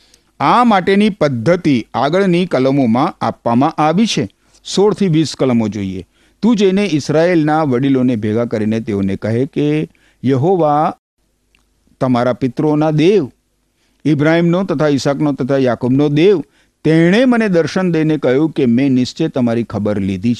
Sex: male